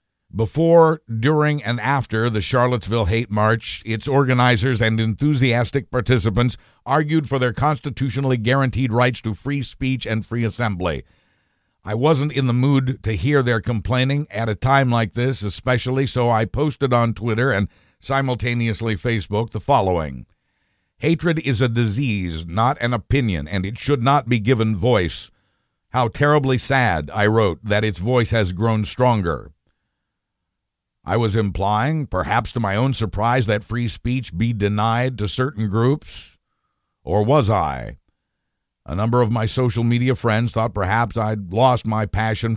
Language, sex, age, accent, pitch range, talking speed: English, male, 60-79, American, 105-130 Hz, 150 wpm